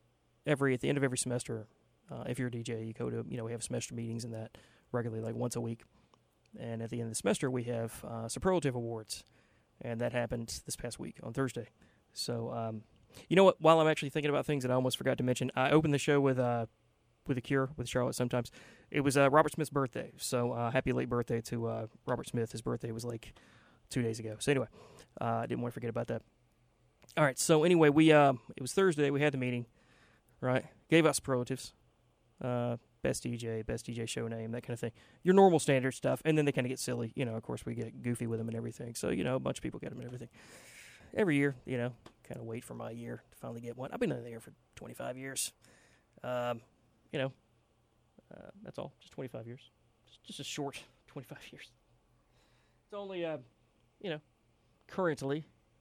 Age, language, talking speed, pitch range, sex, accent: 30-49, English, 230 wpm, 115-140 Hz, male, American